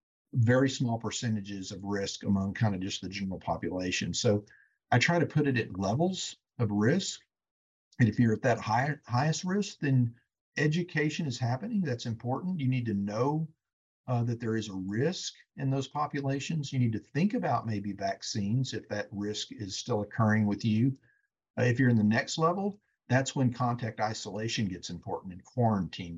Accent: American